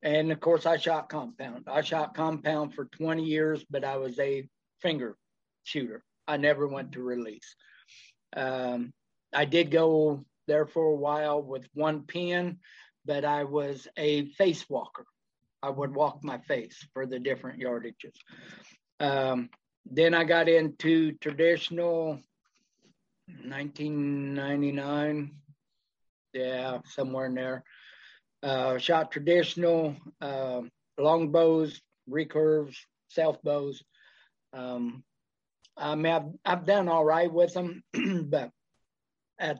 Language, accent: English, American